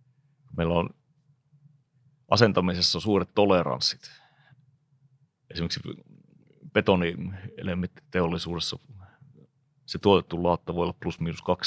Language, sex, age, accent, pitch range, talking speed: Finnish, male, 30-49, native, 90-145 Hz, 75 wpm